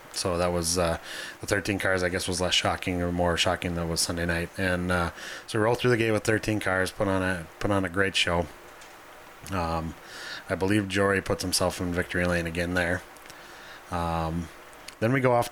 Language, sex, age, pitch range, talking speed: English, male, 20-39, 90-105 Hz, 215 wpm